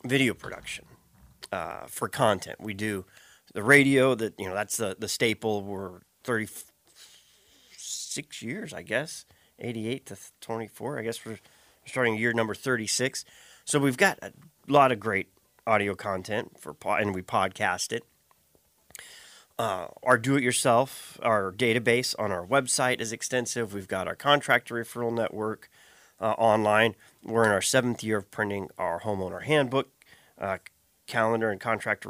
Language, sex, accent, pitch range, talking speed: English, male, American, 100-130 Hz, 145 wpm